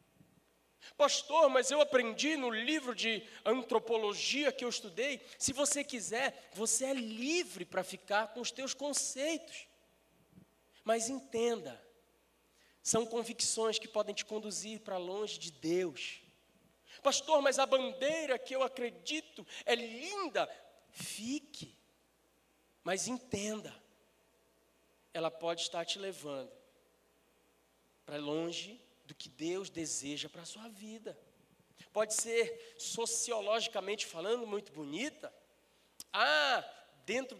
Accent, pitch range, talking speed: Brazilian, 175-265 Hz, 110 wpm